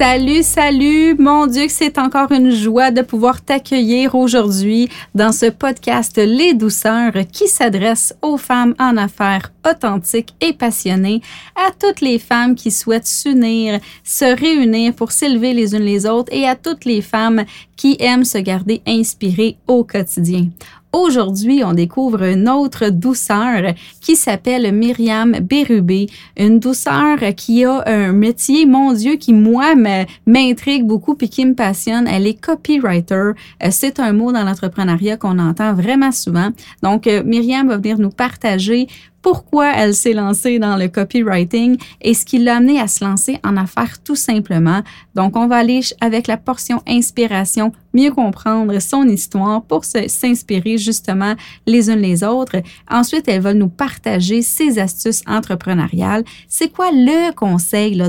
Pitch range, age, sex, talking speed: 200-255 Hz, 30-49, female, 155 wpm